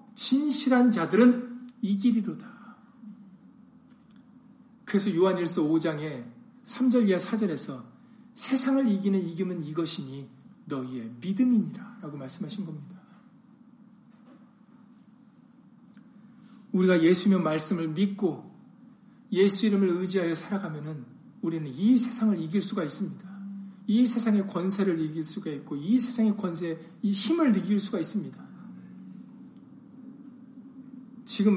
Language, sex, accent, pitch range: Korean, male, native, 185-235 Hz